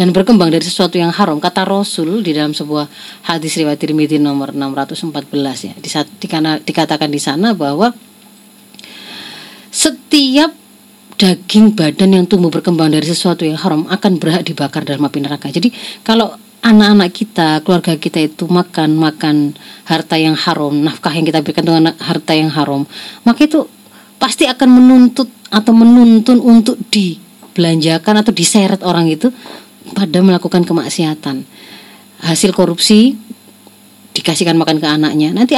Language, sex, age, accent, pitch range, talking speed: Indonesian, female, 30-49, native, 155-215 Hz, 140 wpm